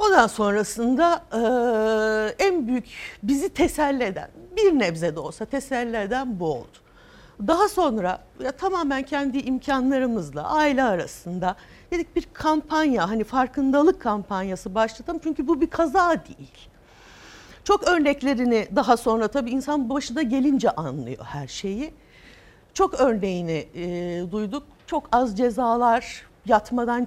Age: 60-79